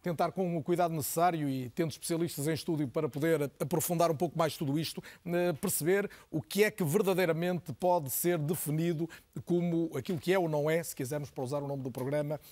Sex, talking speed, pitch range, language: male, 200 wpm, 150-180 Hz, Portuguese